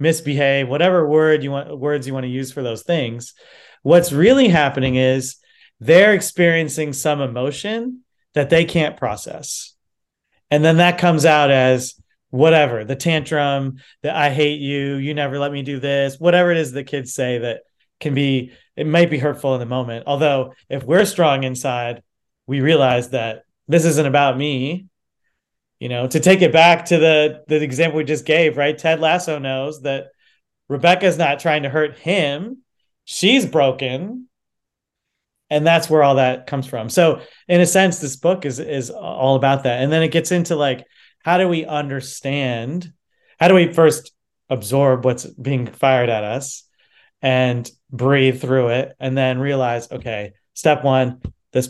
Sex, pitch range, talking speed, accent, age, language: male, 130-160 Hz, 170 wpm, American, 30-49, English